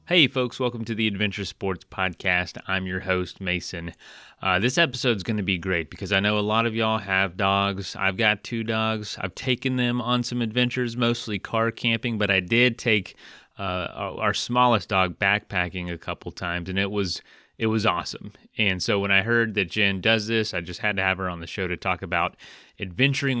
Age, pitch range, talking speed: 30-49, 95-115 Hz, 210 wpm